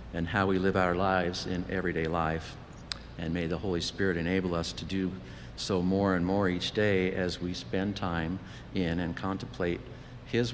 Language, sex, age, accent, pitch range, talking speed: English, male, 50-69, American, 85-100 Hz, 180 wpm